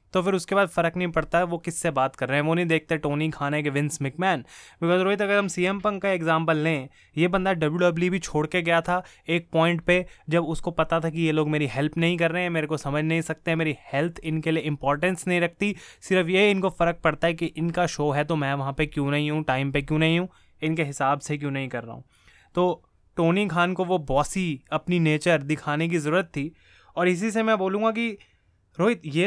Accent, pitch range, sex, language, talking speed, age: native, 155-190 Hz, male, Hindi, 240 wpm, 20-39